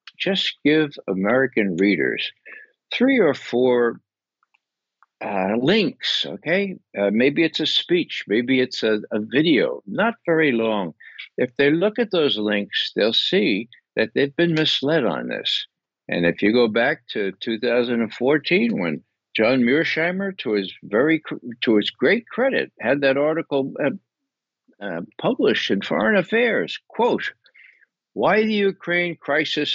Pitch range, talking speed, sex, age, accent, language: 105-170 Hz, 135 wpm, male, 60-79, American, English